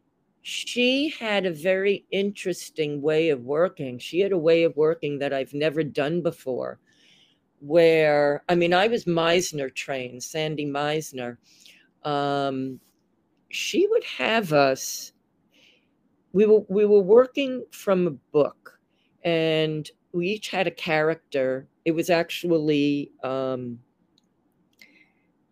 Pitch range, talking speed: 135-175 Hz, 120 wpm